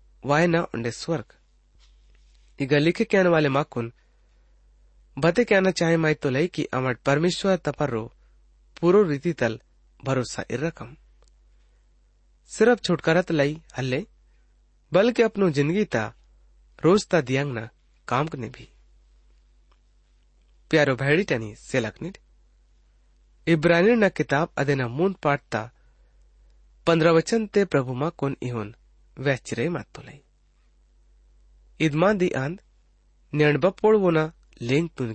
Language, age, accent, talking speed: English, 30-49, Indian, 100 wpm